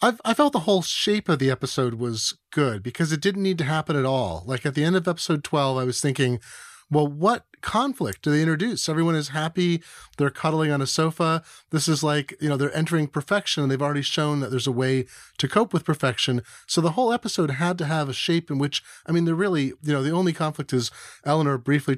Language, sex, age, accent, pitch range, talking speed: English, male, 30-49, American, 130-160 Hz, 230 wpm